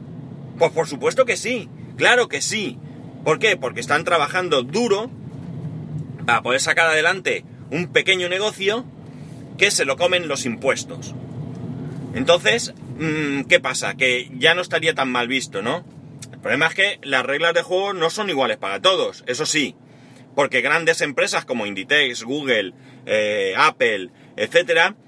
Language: Spanish